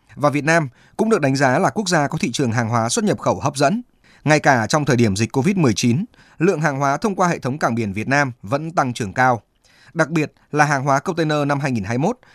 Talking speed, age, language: 245 wpm, 20-39, Vietnamese